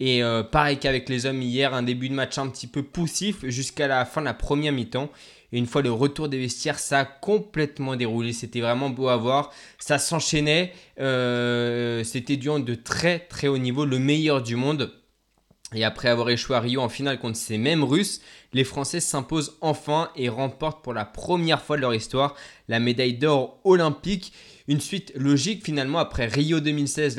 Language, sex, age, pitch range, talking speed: French, male, 20-39, 125-150 Hz, 195 wpm